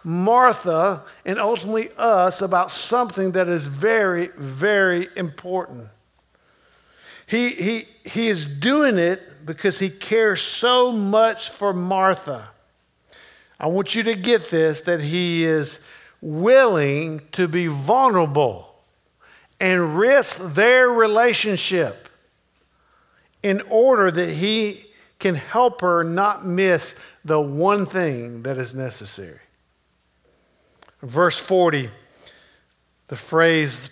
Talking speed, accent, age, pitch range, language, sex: 105 wpm, American, 50-69, 160-200 Hz, English, male